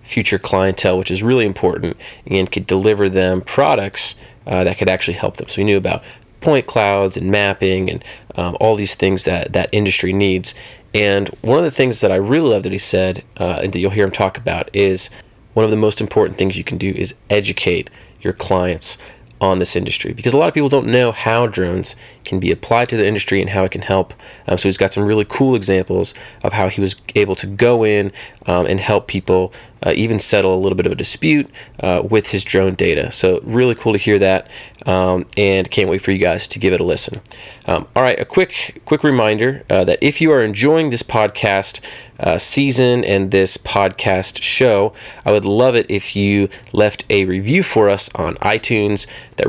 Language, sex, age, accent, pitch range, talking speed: English, male, 30-49, American, 95-115 Hz, 215 wpm